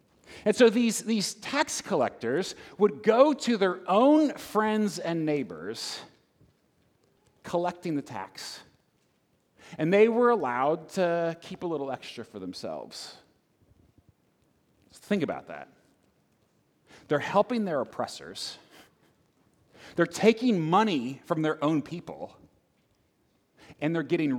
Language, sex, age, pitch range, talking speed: English, male, 30-49, 145-220 Hz, 110 wpm